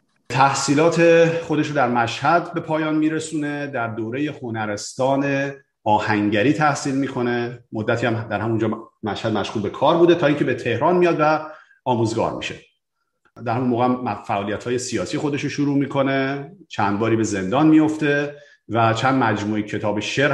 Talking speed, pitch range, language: 170 wpm, 110-145 Hz, Persian